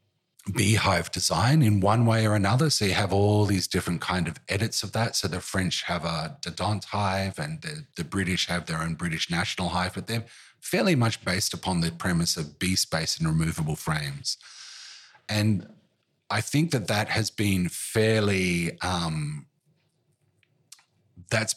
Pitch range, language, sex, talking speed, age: 90-125 Hz, English, male, 165 wpm, 30-49